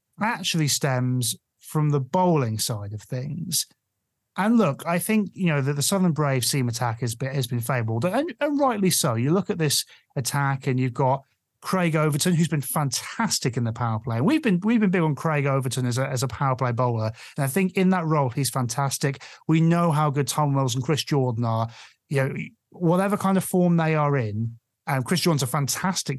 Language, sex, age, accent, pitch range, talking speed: English, male, 30-49, British, 125-175 Hz, 215 wpm